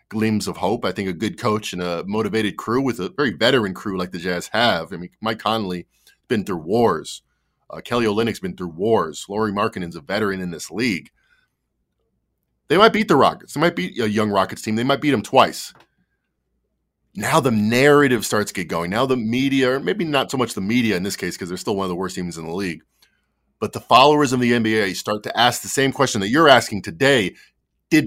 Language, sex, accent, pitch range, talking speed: English, male, American, 100-125 Hz, 225 wpm